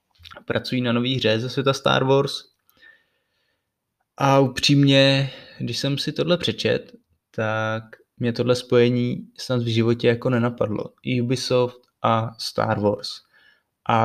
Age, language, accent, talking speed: 20-39, Czech, native, 130 wpm